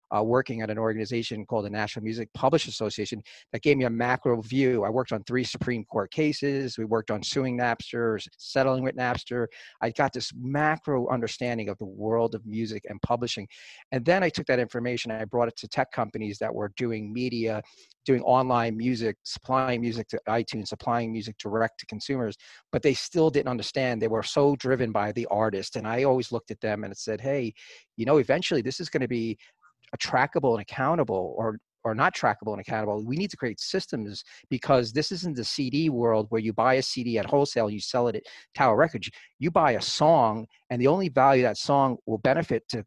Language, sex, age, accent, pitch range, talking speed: English, male, 40-59, American, 110-130 Hz, 210 wpm